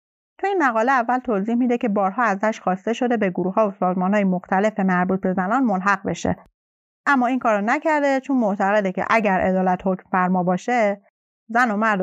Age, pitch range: 30-49, 190-245 Hz